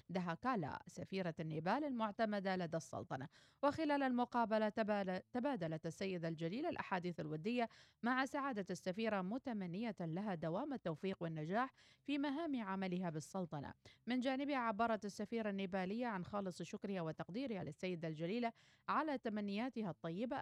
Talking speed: 115 wpm